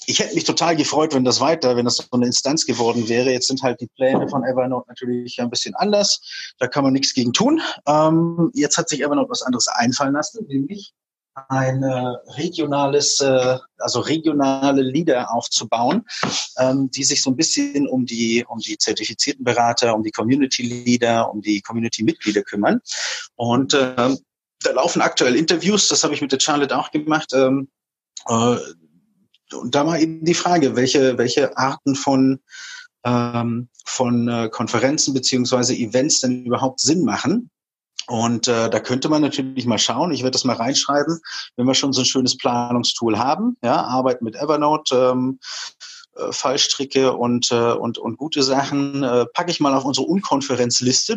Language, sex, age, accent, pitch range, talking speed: German, male, 30-49, German, 120-150 Hz, 165 wpm